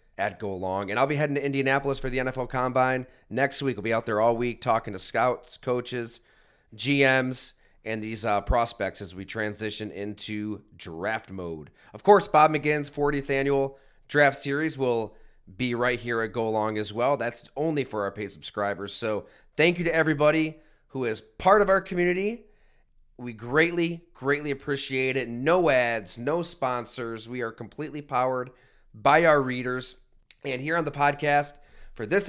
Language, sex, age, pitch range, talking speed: English, male, 30-49, 115-145 Hz, 170 wpm